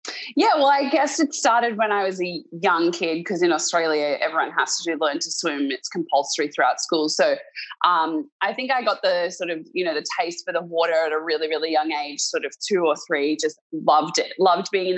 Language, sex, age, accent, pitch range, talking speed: English, female, 20-39, Australian, 165-235 Hz, 230 wpm